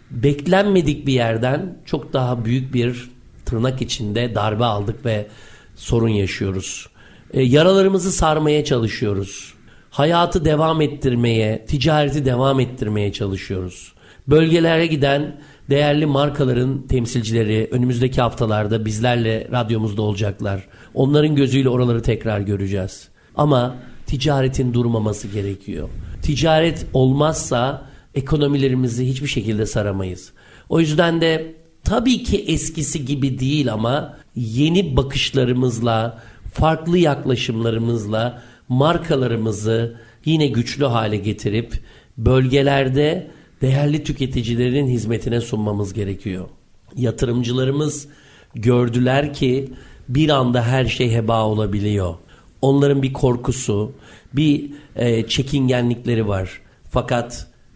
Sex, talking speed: male, 95 wpm